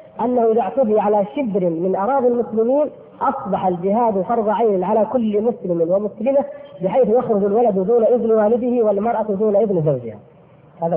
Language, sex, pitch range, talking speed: Arabic, female, 180-240 Hz, 150 wpm